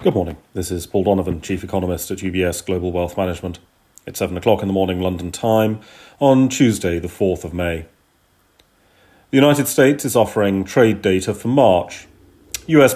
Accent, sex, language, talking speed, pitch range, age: British, male, English, 170 wpm, 95-120 Hz, 40-59